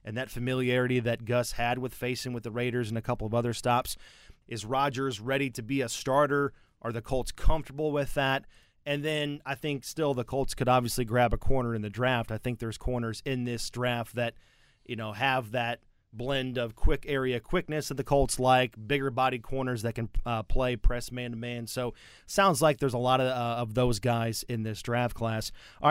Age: 30-49